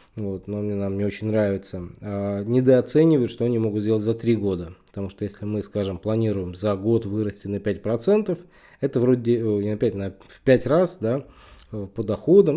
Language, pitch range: Russian, 100-125 Hz